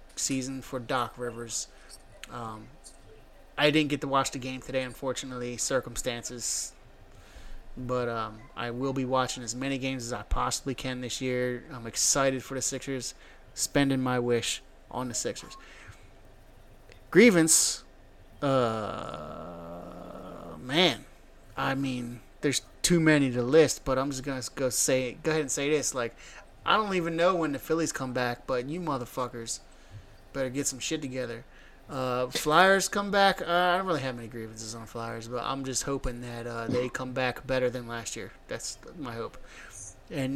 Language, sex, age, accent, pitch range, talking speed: English, male, 30-49, American, 120-140 Hz, 165 wpm